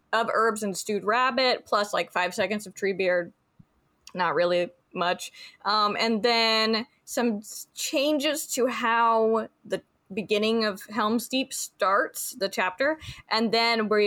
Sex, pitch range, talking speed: female, 190-240 Hz, 140 wpm